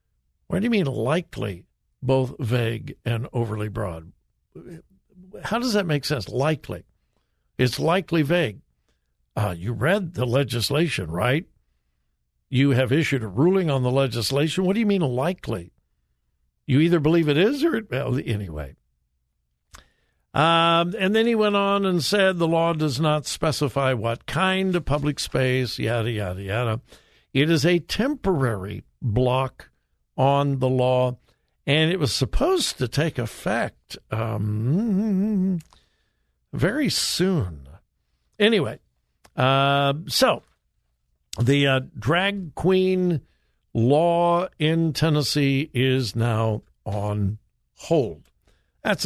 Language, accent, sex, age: English, American, male, 60-79